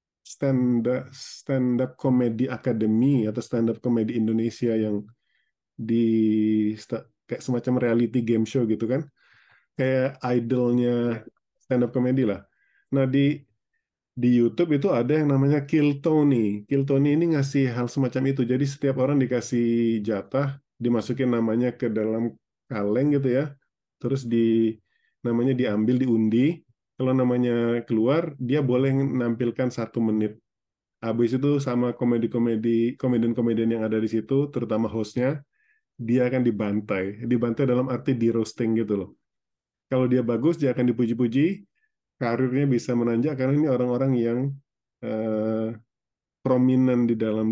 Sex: male